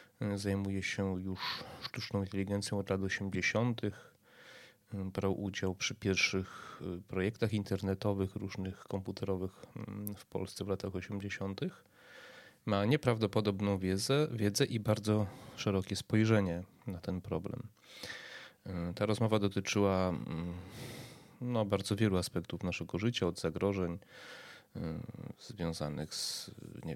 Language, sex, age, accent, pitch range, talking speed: Polish, male, 30-49, native, 95-110 Hz, 100 wpm